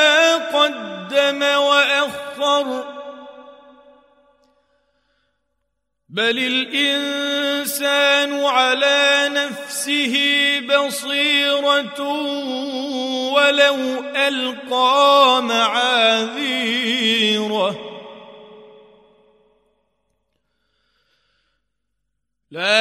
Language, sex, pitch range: Arabic, male, 225-285 Hz